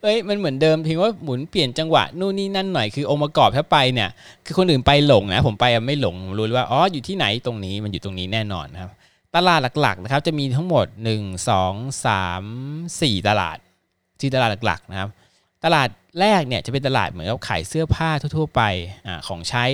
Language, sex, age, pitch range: Thai, male, 20-39, 105-150 Hz